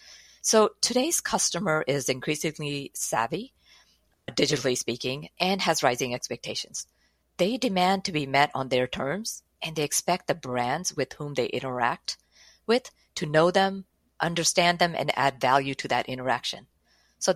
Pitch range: 135-180 Hz